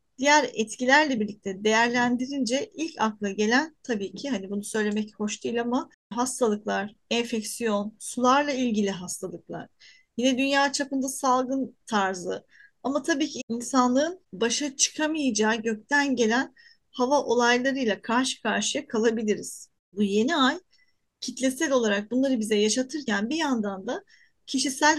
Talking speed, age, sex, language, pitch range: 120 wpm, 40-59, female, Turkish, 215-275 Hz